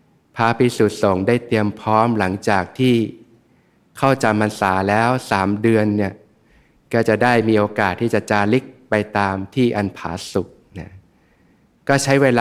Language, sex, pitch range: Thai, male, 100-125 Hz